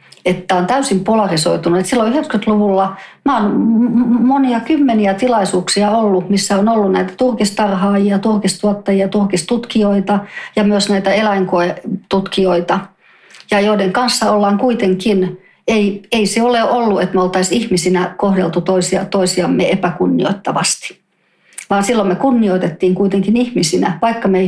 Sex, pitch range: female, 190-235 Hz